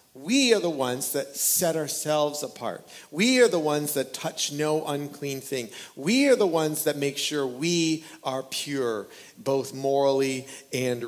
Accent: American